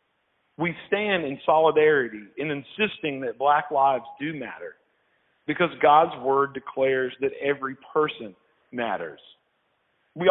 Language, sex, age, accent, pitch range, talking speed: English, male, 40-59, American, 140-180 Hz, 115 wpm